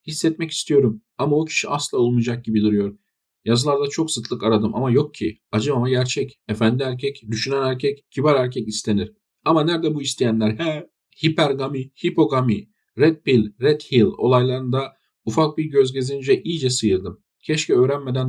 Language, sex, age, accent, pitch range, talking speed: Turkish, male, 50-69, native, 105-140 Hz, 150 wpm